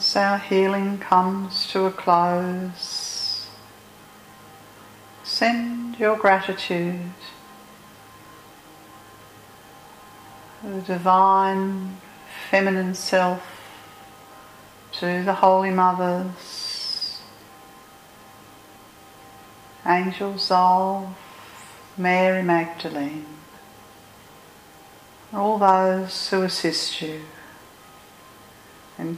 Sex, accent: female, Australian